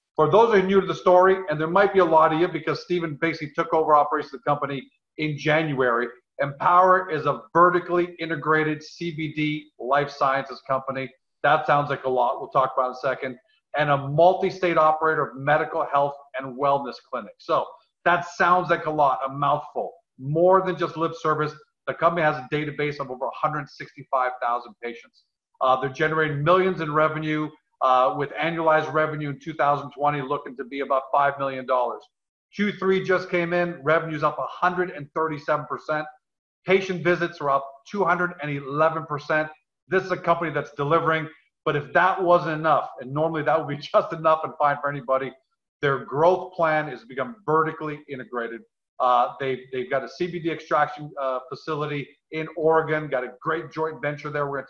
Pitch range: 140-165 Hz